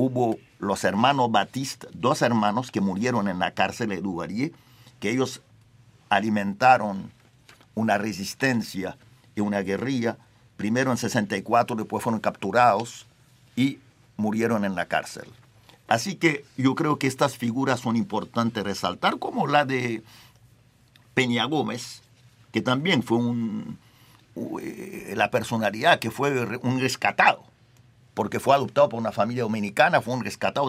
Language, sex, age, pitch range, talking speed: Spanish, male, 50-69, 115-135 Hz, 130 wpm